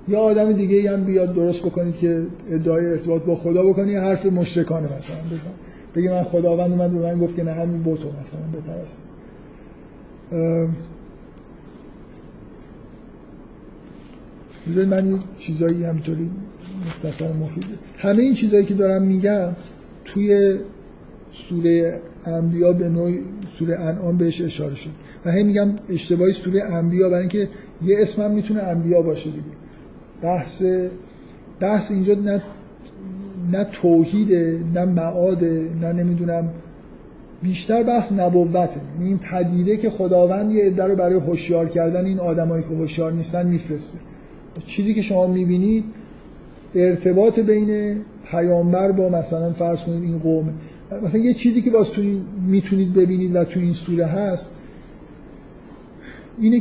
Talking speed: 135 wpm